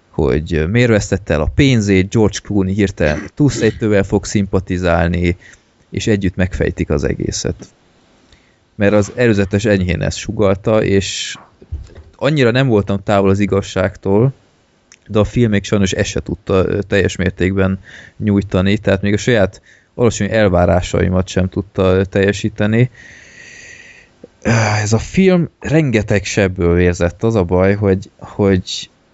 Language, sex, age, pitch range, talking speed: Hungarian, male, 20-39, 95-110 Hz, 120 wpm